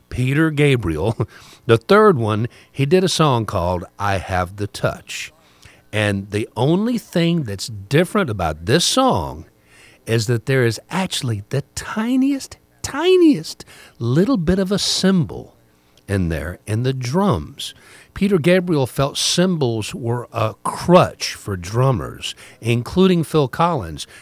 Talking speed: 130 wpm